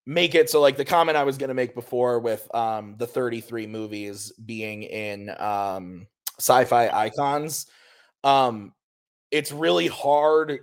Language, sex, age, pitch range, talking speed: English, male, 20-39, 105-135 Hz, 145 wpm